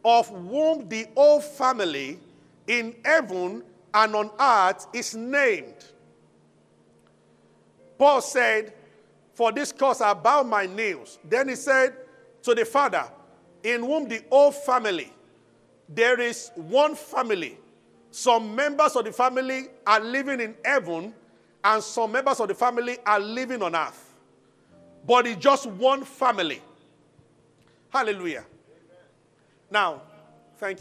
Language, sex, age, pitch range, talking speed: English, male, 50-69, 190-275 Hz, 125 wpm